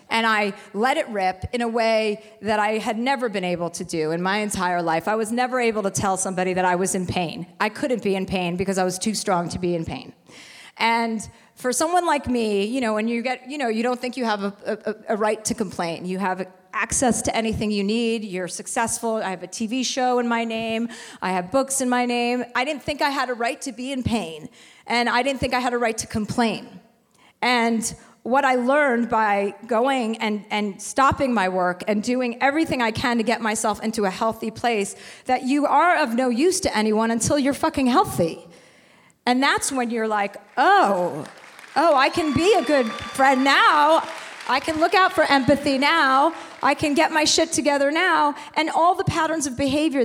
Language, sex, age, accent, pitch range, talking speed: English, female, 40-59, American, 210-265 Hz, 220 wpm